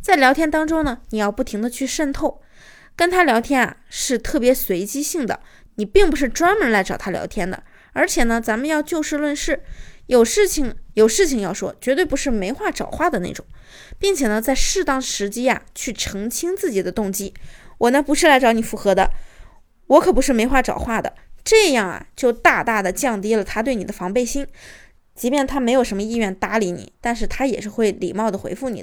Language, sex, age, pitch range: Chinese, female, 20-39, 205-280 Hz